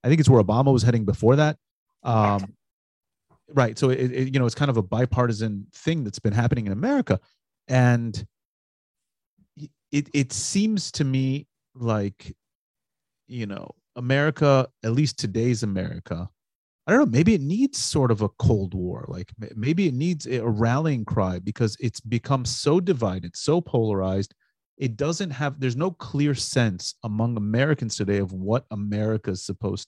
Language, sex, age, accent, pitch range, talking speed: English, male, 30-49, American, 110-135 Hz, 160 wpm